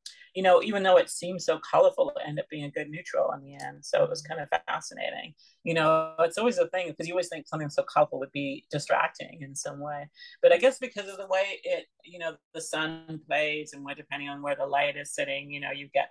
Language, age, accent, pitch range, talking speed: English, 40-59, American, 145-225 Hz, 255 wpm